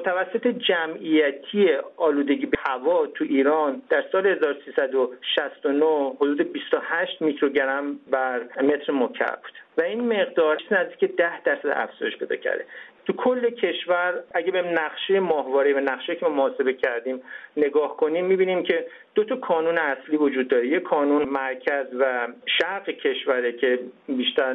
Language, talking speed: Persian, 140 wpm